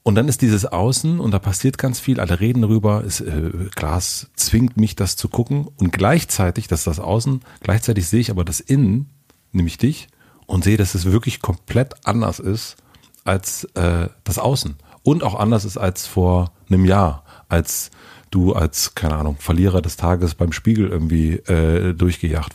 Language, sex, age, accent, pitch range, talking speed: German, male, 40-59, German, 90-115 Hz, 175 wpm